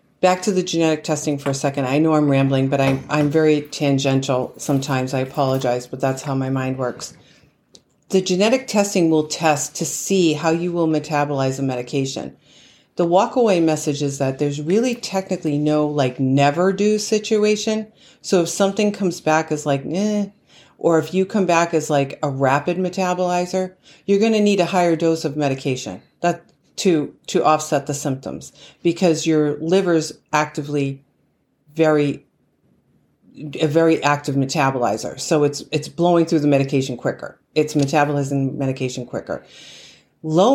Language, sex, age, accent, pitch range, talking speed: English, female, 40-59, American, 140-175 Hz, 155 wpm